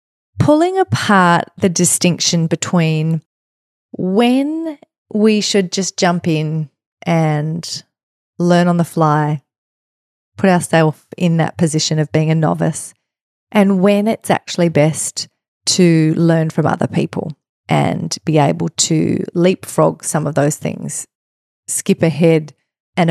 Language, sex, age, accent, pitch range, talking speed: English, female, 30-49, Australian, 155-180 Hz, 120 wpm